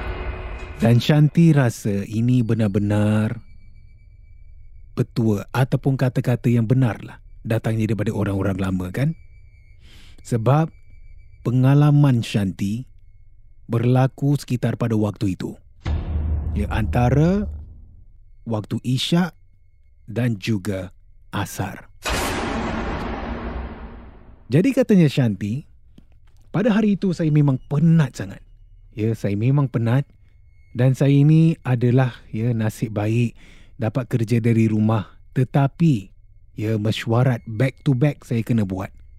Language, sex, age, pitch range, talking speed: Malay, male, 30-49, 100-130 Hz, 100 wpm